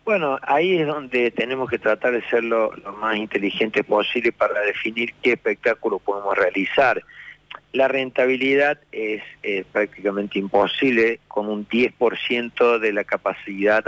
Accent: Argentinian